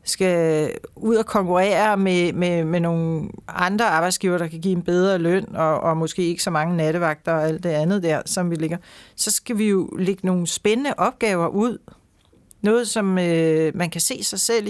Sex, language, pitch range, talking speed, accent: female, Danish, 170-200 Hz, 195 wpm, native